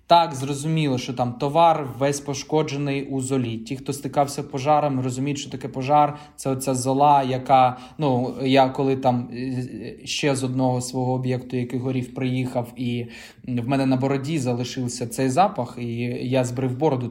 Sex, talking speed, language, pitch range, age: male, 160 wpm, Ukrainian, 120-140 Hz, 20-39